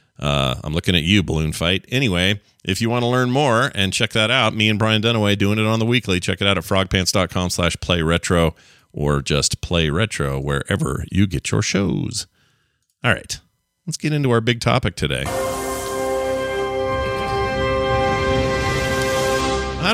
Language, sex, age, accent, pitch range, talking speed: English, male, 40-59, American, 85-120 Hz, 160 wpm